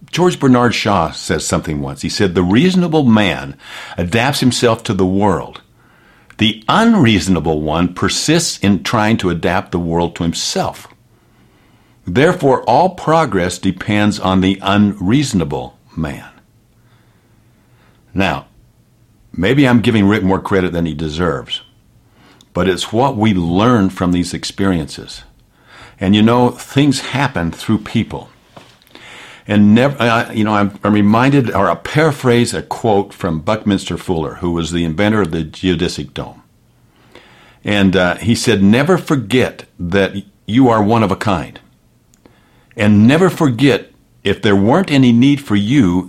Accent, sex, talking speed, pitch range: American, male, 140 wpm, 95-125 Hz